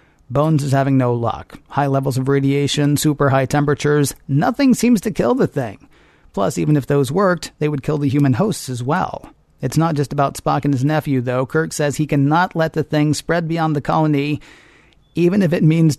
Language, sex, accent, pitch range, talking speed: English, male, American, 140-155 Hz, 205 wpm